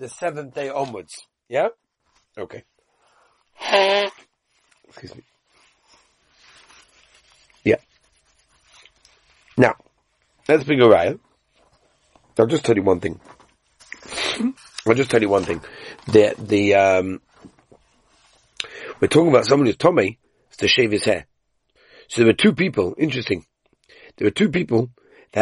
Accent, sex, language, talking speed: British, male, English, 120 wpm